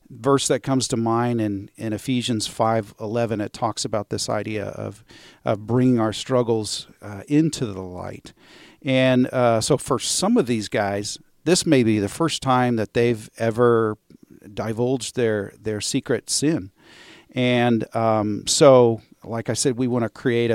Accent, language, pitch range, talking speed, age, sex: American, English, 110-130 Hz, 160 wpm, 50-69, male